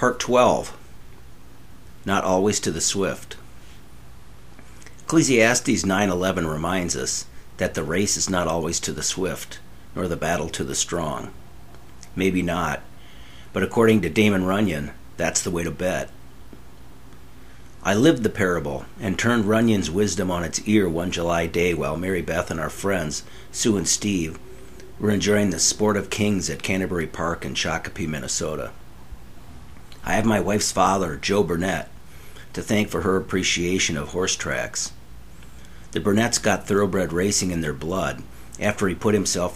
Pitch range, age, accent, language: 80-100 Hz, 50-69, American, English